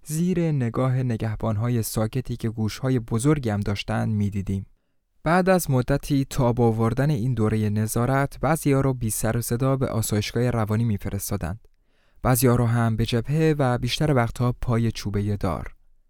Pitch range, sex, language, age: 110-135 Hz, male, Persian, 20-39